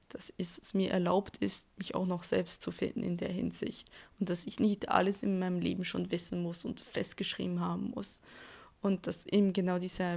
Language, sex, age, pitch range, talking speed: German, female, 20-39, 180-205 Hz, 200 wpm